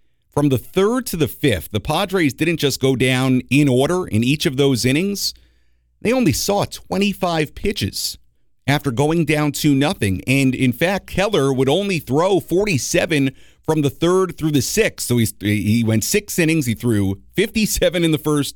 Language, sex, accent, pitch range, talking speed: English, male, American, 105-150 Hz, 180 wpm